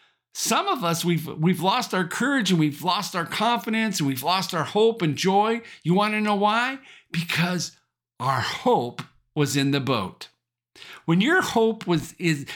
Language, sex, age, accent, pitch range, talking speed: English, male, 50-69, American, 150-215 Hz, 175 wpm